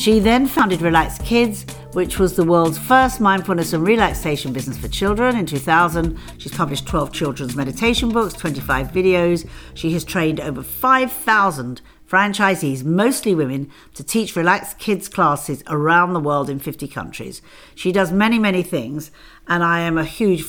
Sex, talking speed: female, 160 wpm